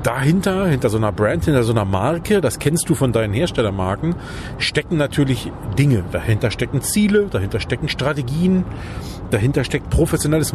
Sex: male